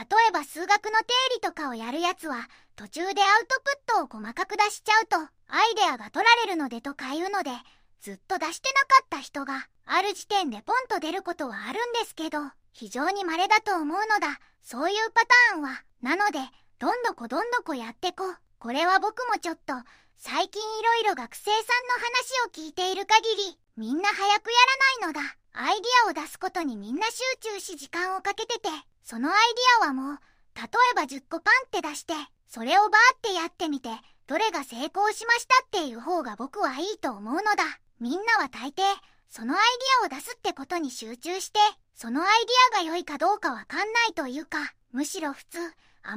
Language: Japanese